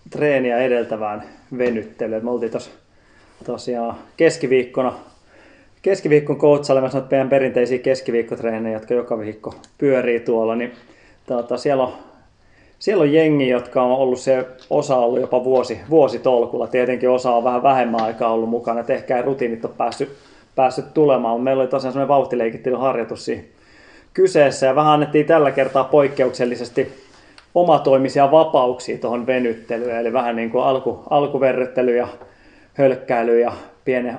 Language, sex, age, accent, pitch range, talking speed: Finnish, male, 20-39, native, 120-135 Hz, 130 wpm